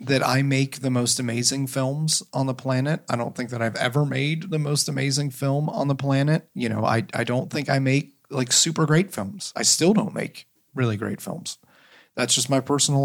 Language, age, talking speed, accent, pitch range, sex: English, 40-59, 215 wpm, American, 115-135 Hz, male